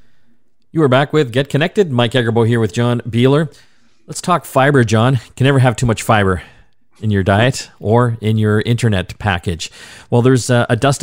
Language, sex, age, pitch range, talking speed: English, male, 40-59, 95-120 Hz, 190 wpm